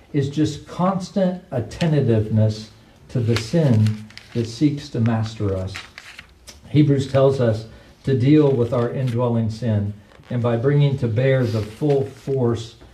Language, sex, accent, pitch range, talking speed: English, male, American, 115-170 Hz, 135 wpm